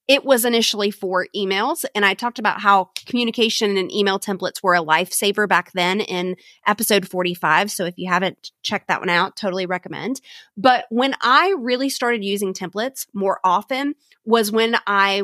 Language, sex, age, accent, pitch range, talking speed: English, female, 30-49, American, 190-245 Hz, 175 wpm